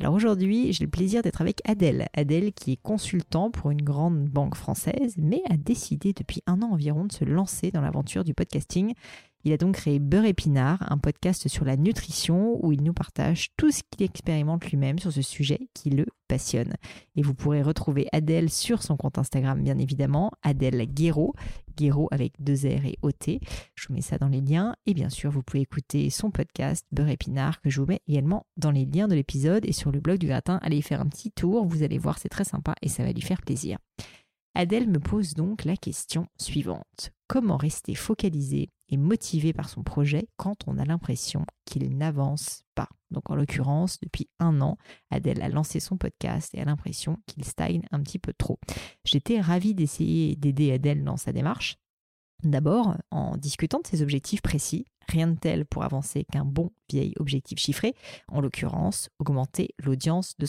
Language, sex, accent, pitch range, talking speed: French, female, French, 145-180 Hz, 195 wpm